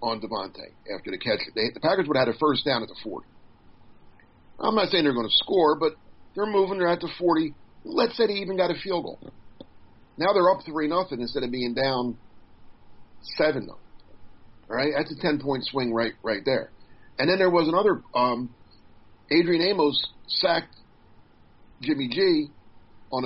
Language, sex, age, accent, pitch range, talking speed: English, male, 50-69, American, 115-170 Hz, 185 wpm